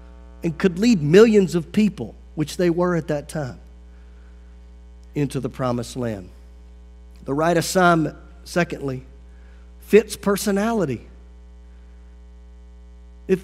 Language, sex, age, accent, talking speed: English, male, 40-59, American, 105 wpm